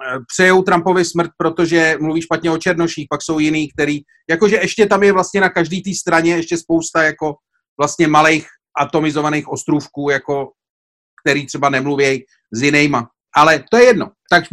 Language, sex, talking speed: Czech, male, 160 wpm